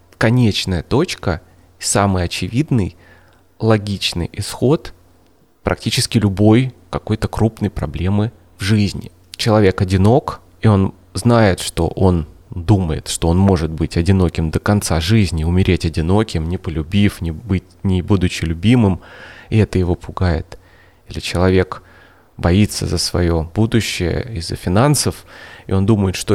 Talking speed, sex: 120 wpm, male